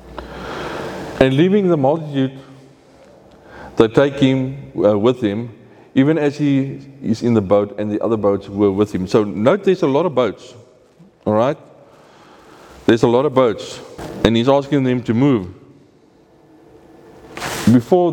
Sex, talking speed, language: male, 145 wpm, English